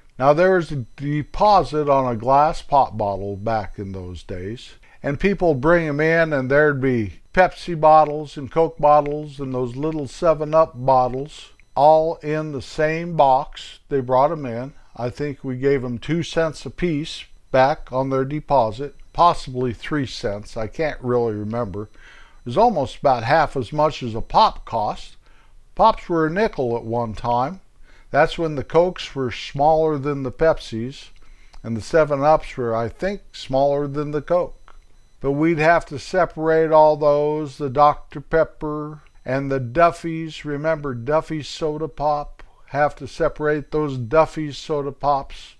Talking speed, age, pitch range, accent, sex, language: 165 wpm, 60-79, 130-160 Hz, American, male, English